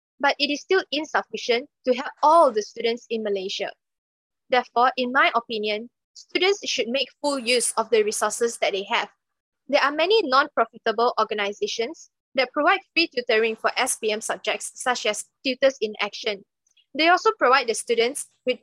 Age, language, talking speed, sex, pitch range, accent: 20-39, English, 160 wpm, female, 230-295 Hz, Malaysian